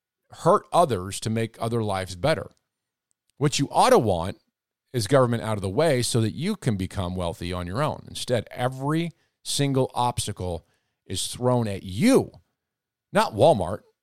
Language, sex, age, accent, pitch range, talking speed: English, male, 50-69, American, 105-135 Hz, 160 wpm